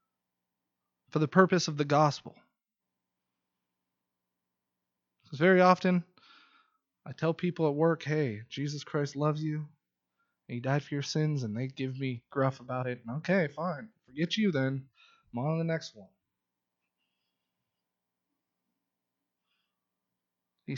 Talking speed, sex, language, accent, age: 130 wpm, male, English, American, 20-39